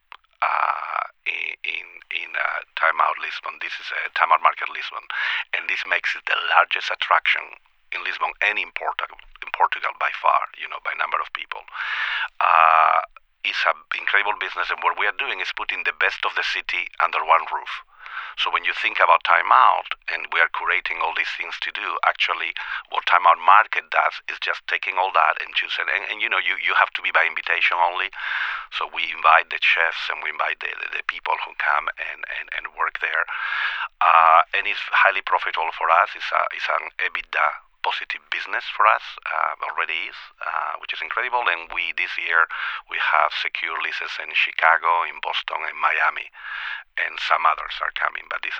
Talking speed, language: 200 wpm, English